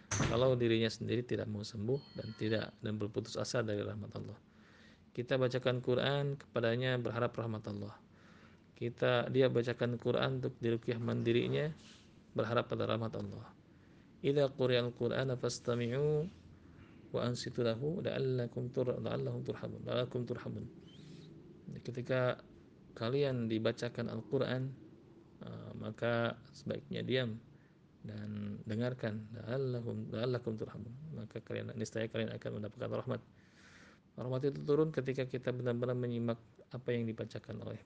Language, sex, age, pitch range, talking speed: Malay, male, 50-69, 105-125 Hz, 105 wpm